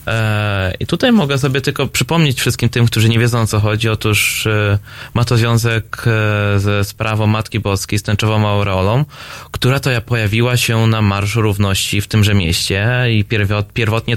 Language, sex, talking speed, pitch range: Polish, male, 160 wpm, 100-115 Hz